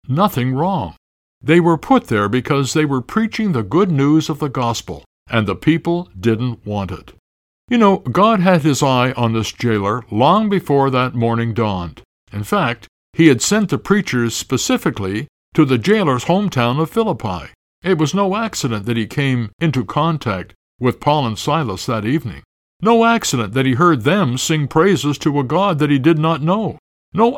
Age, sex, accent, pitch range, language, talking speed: 60-79, male, American, 115-175 Hz, English, 180 wpm